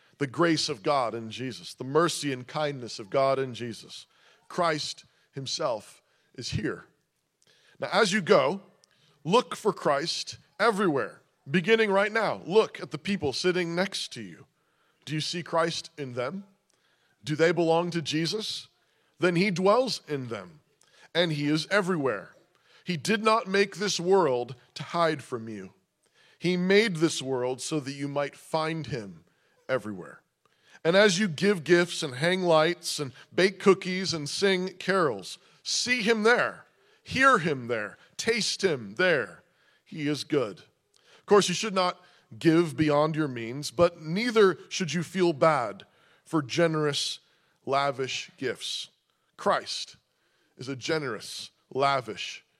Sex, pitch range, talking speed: male, 140-185 Hz, 145 wpm